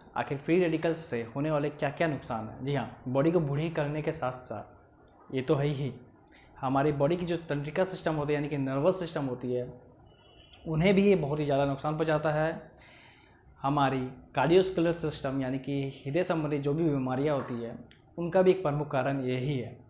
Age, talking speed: 20-39, 195 wpm